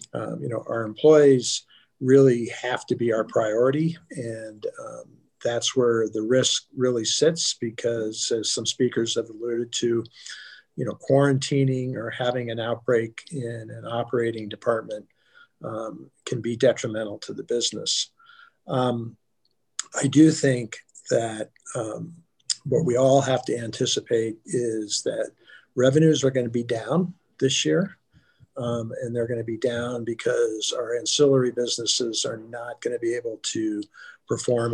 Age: 50-69